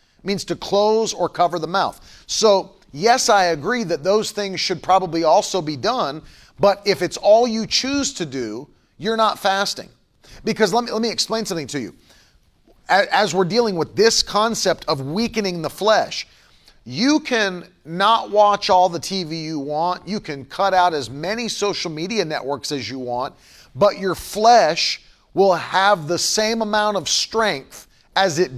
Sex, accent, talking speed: male, American, 170 wpm